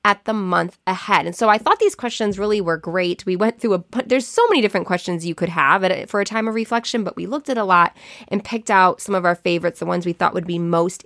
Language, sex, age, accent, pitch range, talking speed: English, female, 20-39, American, 185-235 Hz, 270 wpm